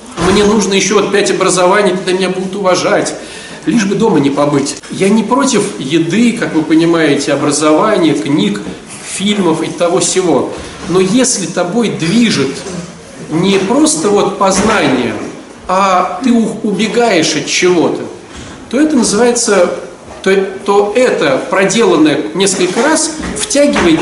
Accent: native